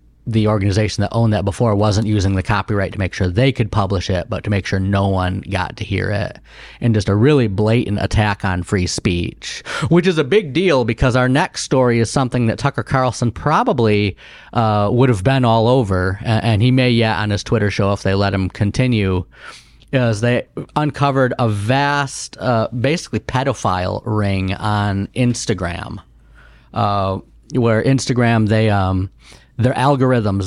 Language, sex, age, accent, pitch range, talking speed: English, male, 30-49, American, 100-125 Hz, 175 wpm